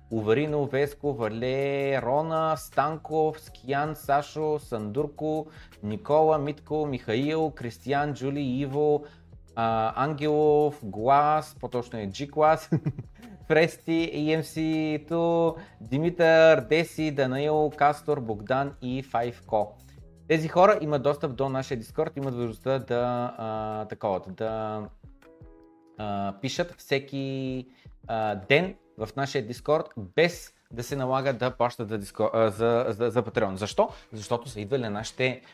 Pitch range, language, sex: 110-155 Hz, Bulgarian, male